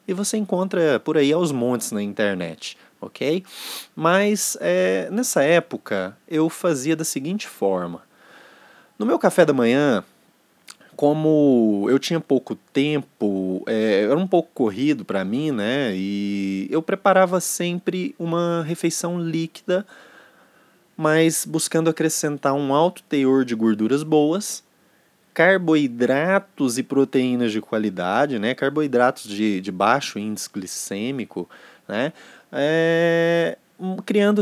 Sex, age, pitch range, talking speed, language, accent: male, 20-39, 130-190 Hz, 115 wpm, Portuguese, Brazilian